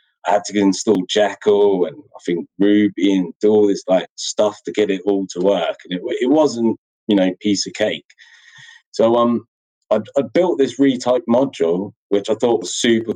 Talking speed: 195 wpm